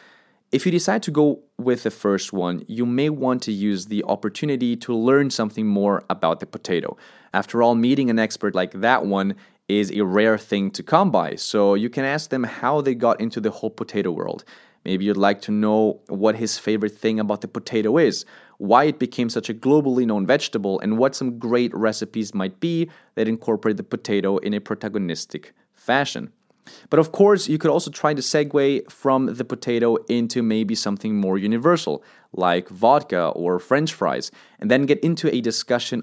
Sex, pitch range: male, 100-130 Hz